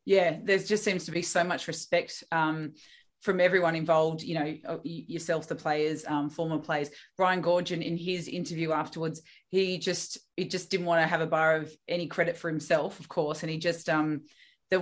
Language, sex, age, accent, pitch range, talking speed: English, female, 20-39, Australian, 160-180 Hz, 200 wpm